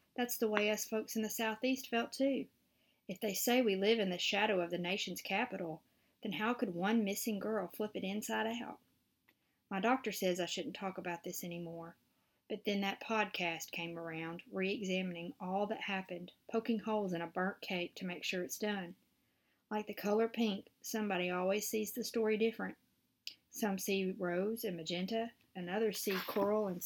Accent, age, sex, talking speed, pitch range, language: American, 40-59, female, 185 wpm, 180-225 Hz, English